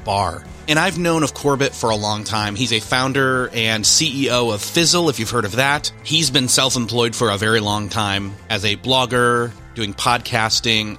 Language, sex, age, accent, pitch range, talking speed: English, male, 30-49, American, 110-145 Hz, 195 wpm